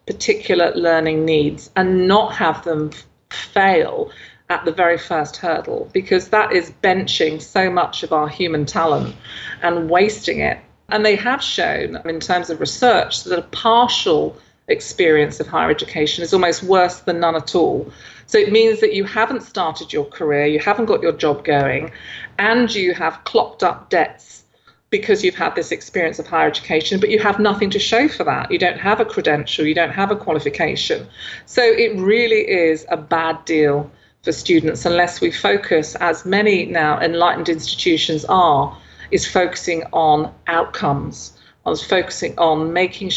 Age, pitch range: 40-59, 155-210 Hz